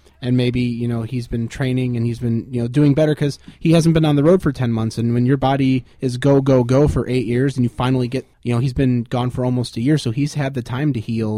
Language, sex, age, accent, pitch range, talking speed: English, male, 30-49, American, 120-140 Hz, 290 wpm